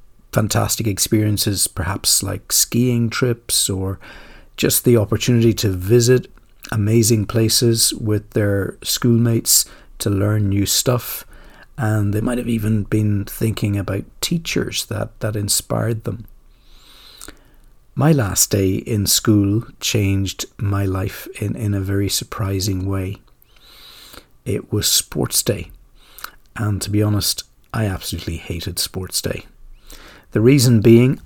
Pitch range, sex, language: 100-115 Hz, male, English